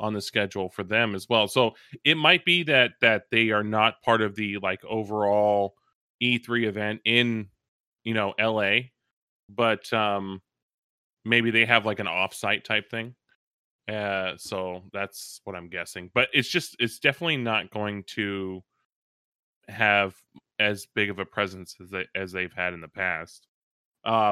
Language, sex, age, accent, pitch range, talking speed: English, male, 20-39, American, 100-115 Hz, 165 wpm